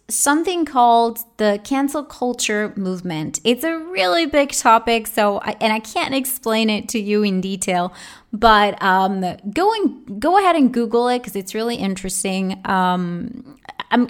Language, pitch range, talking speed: English, 190-250 Hz, 155 wpm